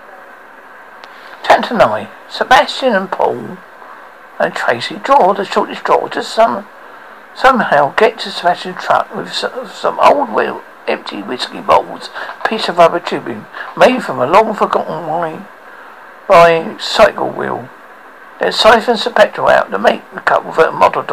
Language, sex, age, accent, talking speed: English, male, 60-79, British, 150 wpm